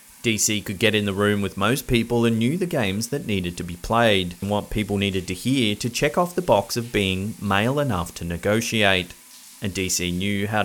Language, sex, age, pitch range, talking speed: English, male, 30-49, 95-115 Hz, 220 wpm